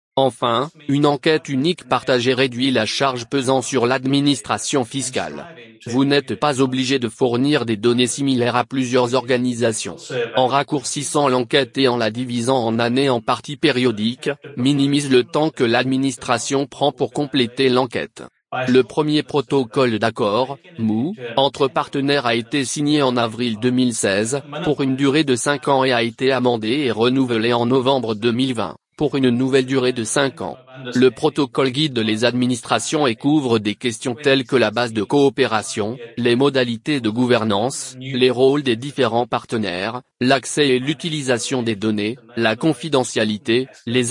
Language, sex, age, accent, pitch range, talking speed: English, male, 30-49, French, 120-140 Hz, 155 wpm